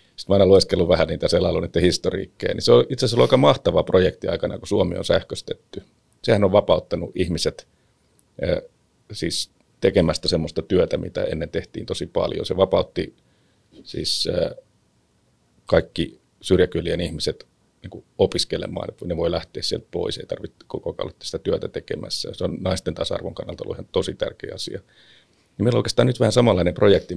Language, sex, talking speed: English, male, 155 wpm